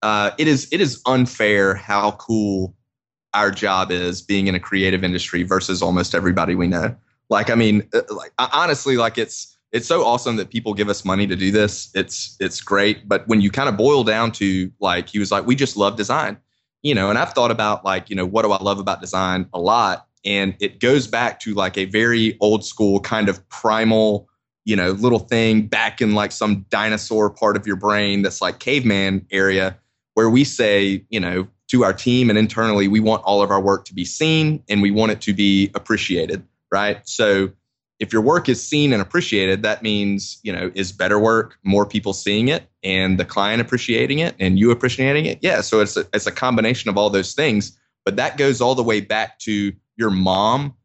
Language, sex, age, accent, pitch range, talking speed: English, male, 20-39, American, 95-120 Hz, 210 wpm